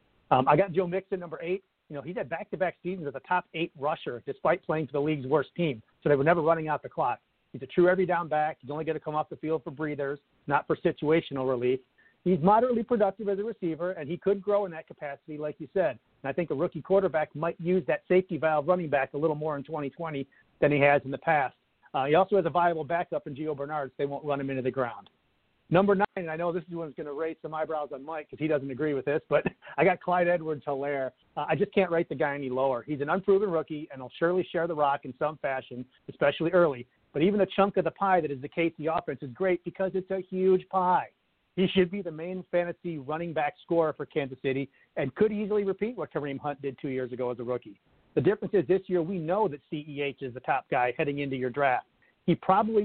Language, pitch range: English, 145-180 Hz